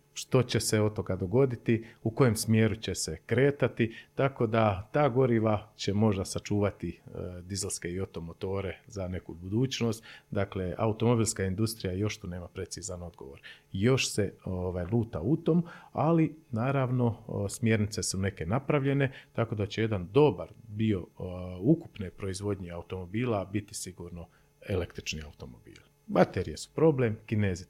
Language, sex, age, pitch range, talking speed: Croatian, male, 40-59, 90-115 Hz, 130 wpm